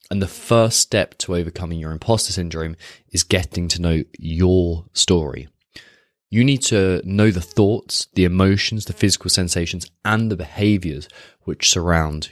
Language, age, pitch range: English, 20-39, 80-105 Hz